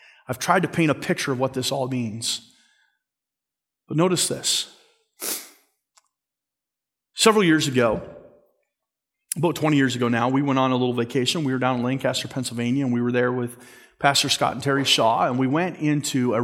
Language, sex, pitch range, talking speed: English, male, 130-180 Hz, 180 wpm